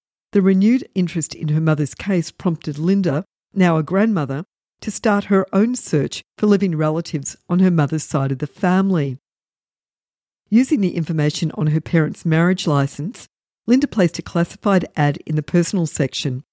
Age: 50-69